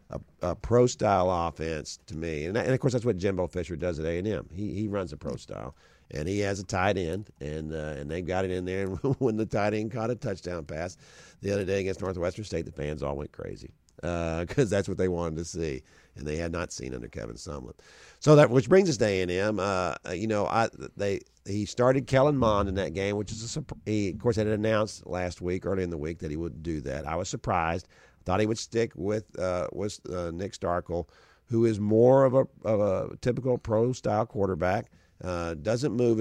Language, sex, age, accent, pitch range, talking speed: English, male, 50-69, American, 85-110 Hz, 230 wpm